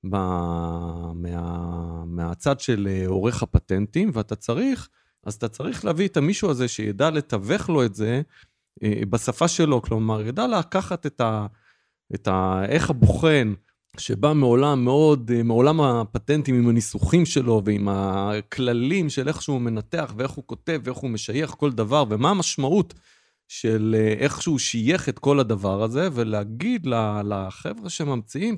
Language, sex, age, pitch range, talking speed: Hebrew, male, 30-49, 105-155 Hz, 135 wpm